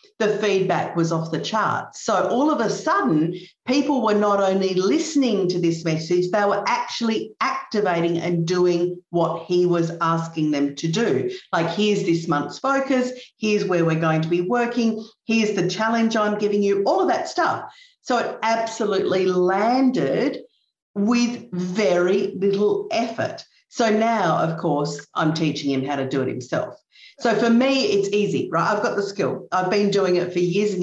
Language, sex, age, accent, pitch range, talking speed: English, female, 50-69, Australian, 170-225 Hz, 175 wpm